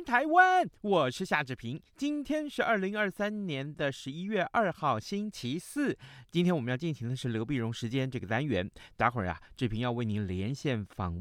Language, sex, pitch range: Chinese, male, 100-160 Hz